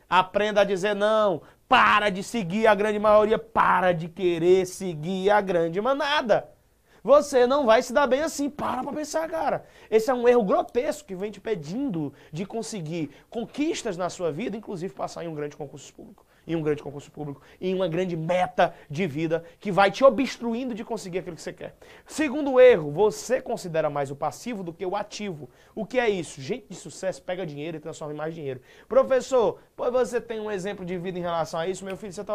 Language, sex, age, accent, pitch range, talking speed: Portuguese, male, 20-39, Brazilian, 170-230 Hz, 210 wpm